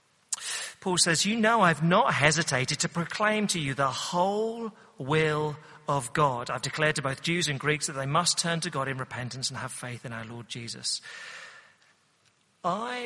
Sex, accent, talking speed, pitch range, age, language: male, British, 180 wpm, 135-195 Hz, 40-59, English